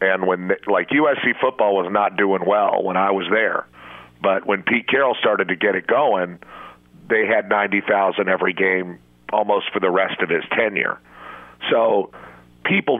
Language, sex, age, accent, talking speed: English, male, 50-69, American, 165 wpm